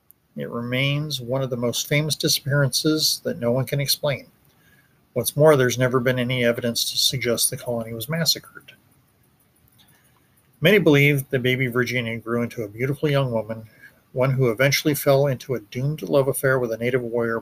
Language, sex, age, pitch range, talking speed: English, male, 50-69, 120-140 Hz, 170 wpm